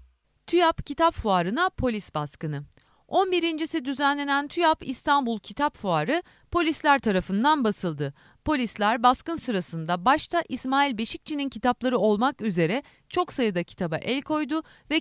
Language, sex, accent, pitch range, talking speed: Turkish, female, native, 180-290 Hz, 115 wpm